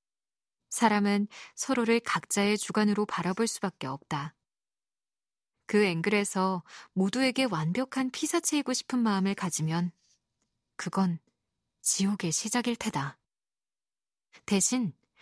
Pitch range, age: 180-240 Hz, 20-39